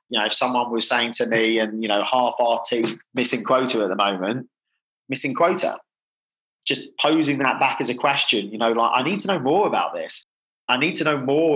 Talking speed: 220 wpm